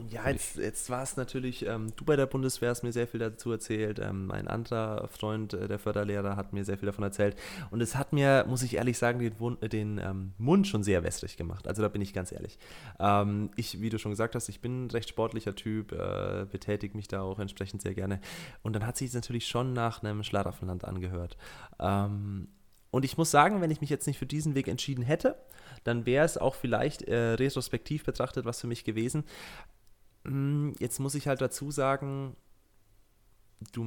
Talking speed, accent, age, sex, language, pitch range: 210 wpm, German, 20-39, male, German, 105-130 Hz